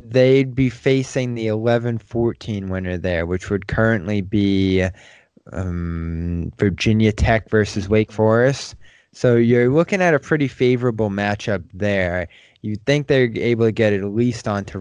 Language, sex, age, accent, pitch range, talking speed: English, male, 20-39, American, 95-115 Hz, 145 wpm